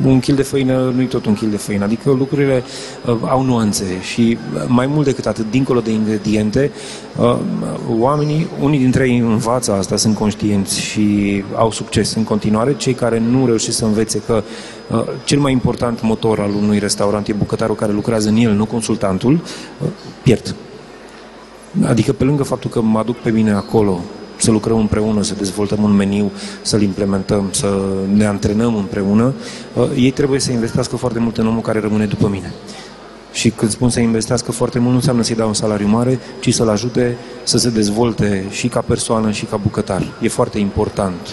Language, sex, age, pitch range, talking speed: Romanian, male, 30-49, 105-125 Hz, 185 wpm